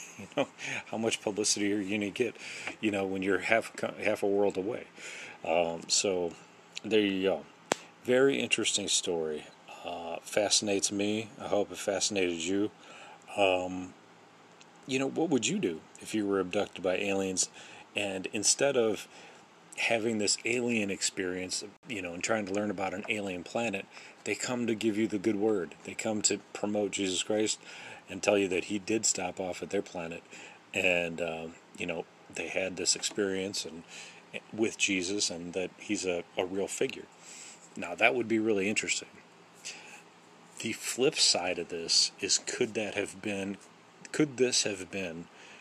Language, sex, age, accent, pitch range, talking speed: English, male, 40-59, American, 90-105 Hz, 165 wpm